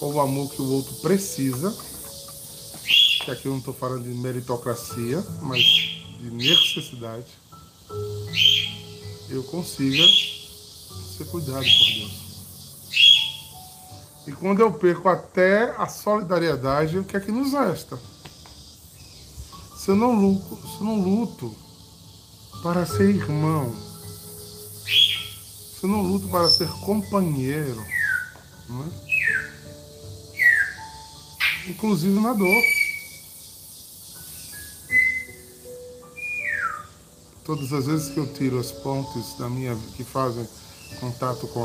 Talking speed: 105 wpm